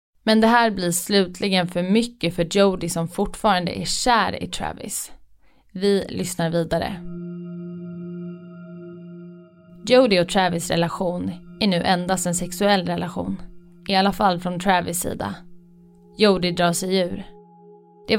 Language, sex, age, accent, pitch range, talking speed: Swedish, female, 20-39, native, 175-200 Hz, 130 wpm